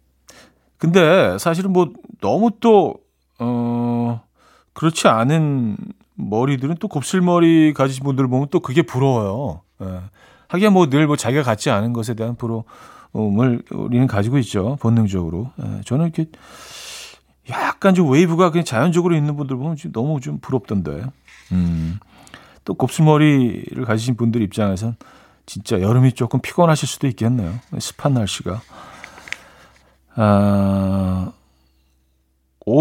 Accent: native